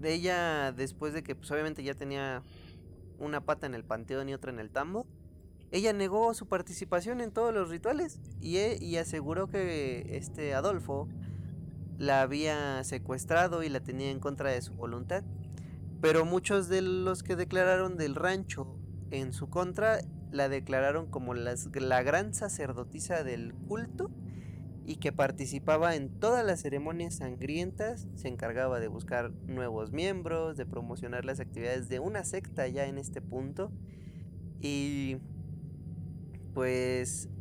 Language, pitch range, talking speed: Spanish, 120-165 Hz, 145 wpm